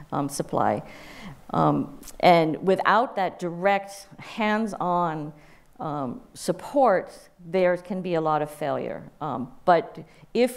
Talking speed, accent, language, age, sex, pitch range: 115 wpm, American, English, 50-69, female, 155-195 Hz